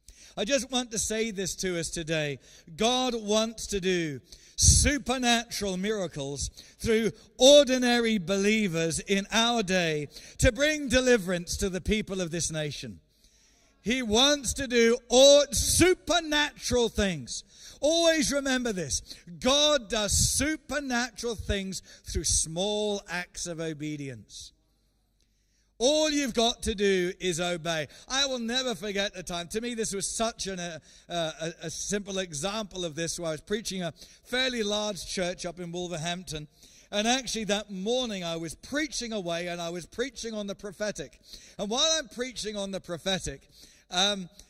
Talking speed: 145 wpm